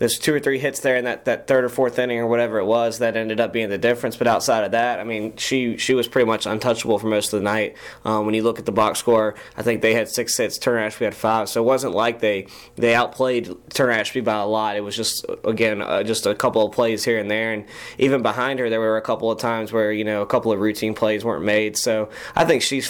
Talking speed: 280 wpm